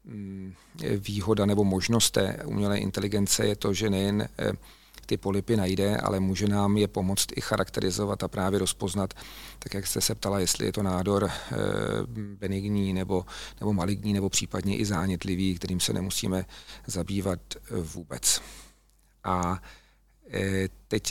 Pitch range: 95-105 Hz